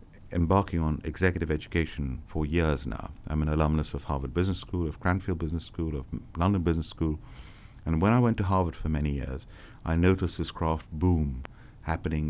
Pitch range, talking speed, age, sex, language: 80-110 Hz, 180 wpm, 50-69, male, English